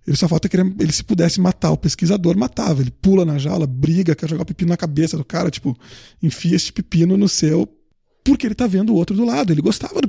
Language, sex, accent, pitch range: Portuguese, male, Brazilian, 150-185 Hz